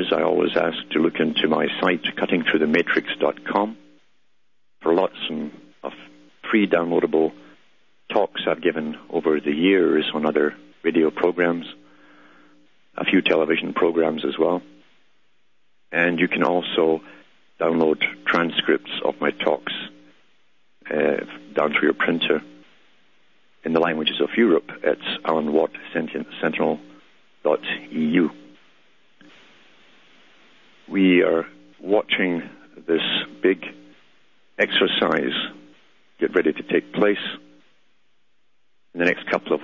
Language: English